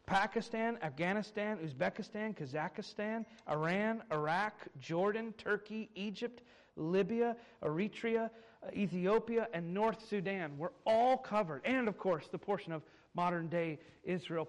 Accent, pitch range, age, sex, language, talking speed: American, 185-235 Hz, 40-59, male, English, 110 wpm